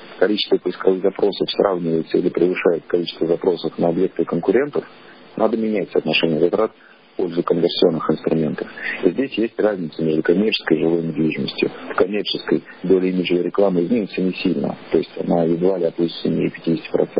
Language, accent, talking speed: Russian, native, 145 wpm